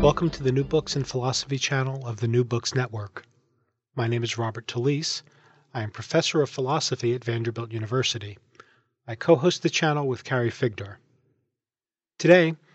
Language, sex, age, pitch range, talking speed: English, male, 40-59, 120-150 Hz, 160 wpm